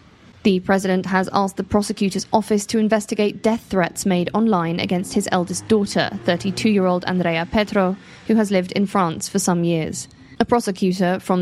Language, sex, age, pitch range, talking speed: English, female, 20-39, 175-200 Hz, 165 wpm